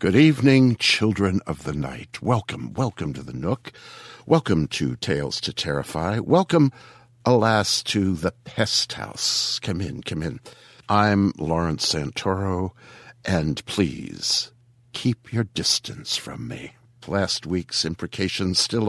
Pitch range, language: 85-120 Hz, English